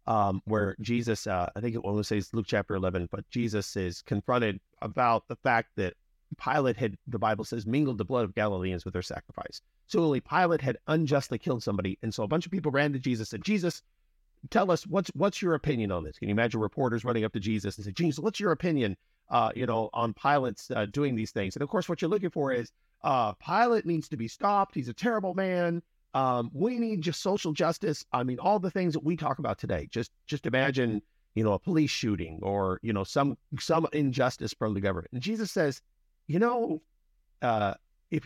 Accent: American